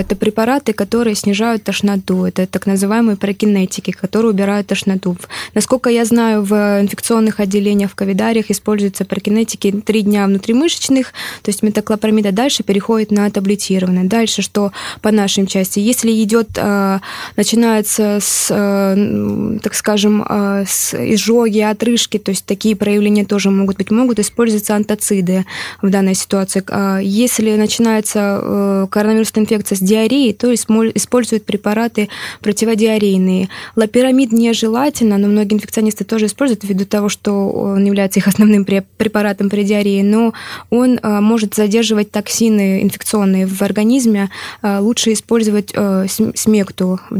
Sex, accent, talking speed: female, native, 125 wpm